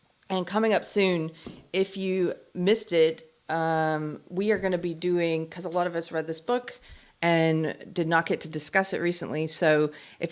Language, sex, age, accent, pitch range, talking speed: English, female, 40-59, American, 150-190 Hz, 185 wpm